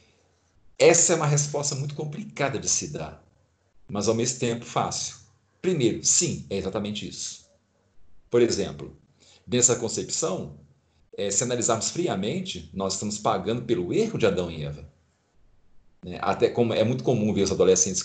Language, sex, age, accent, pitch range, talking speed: Portuguese, male, 50-69, Brazilian, 90-140 Hz, 150 wpm